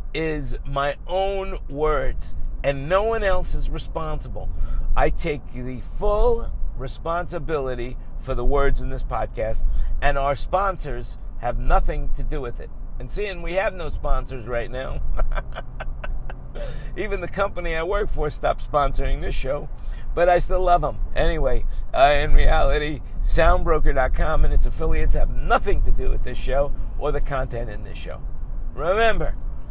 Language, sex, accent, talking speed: English, male, American, 150 wpm